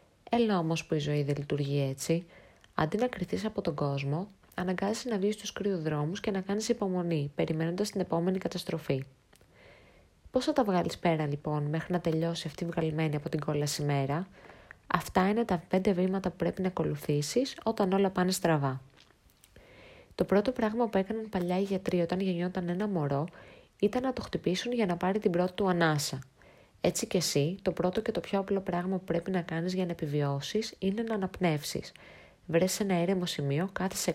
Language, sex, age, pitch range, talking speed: Greek, female, 20-39, 155-200 Hz, 185 wpm